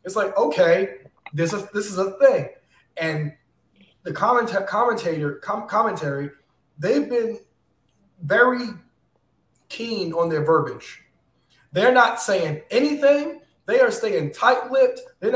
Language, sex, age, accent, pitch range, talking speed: English, male, 20-39, American, 145-205 Hz, 120 wpm